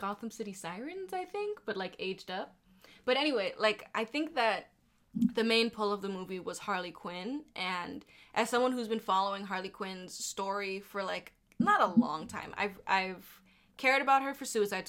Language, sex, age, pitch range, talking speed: English, female, 10-29, 190-235 Hz, 185 wpm